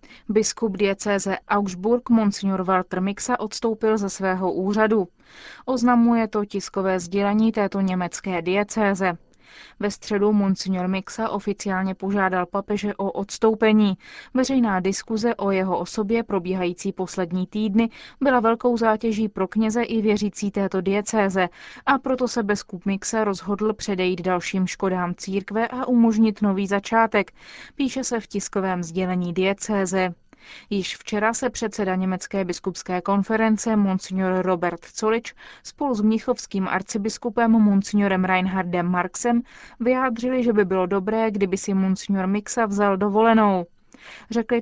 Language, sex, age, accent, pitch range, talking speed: Czech, female, 20-39, native, 190-230 Hz, 125 wpm